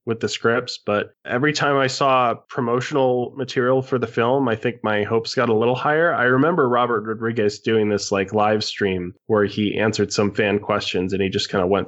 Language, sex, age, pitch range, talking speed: English, male, 20-39, 100-125 Hz, 210 wpm